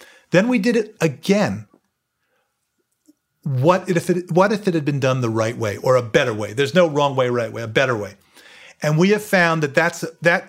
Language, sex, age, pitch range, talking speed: English, male, 40-59, 140-180 Hz, 210 wpm